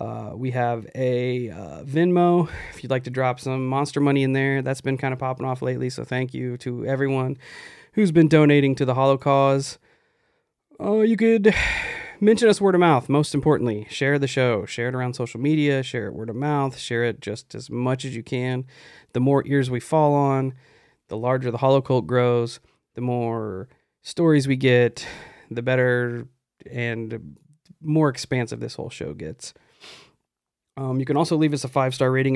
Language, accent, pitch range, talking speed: English, American, 125-155 Hz, 185 wpm